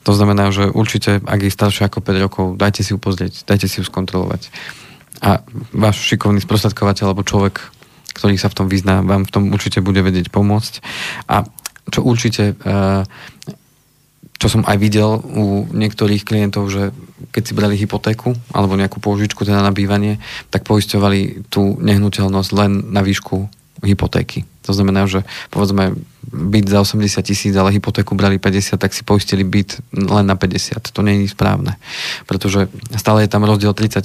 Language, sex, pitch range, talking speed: Slovak, male, 100-110 Hz, 165 wpm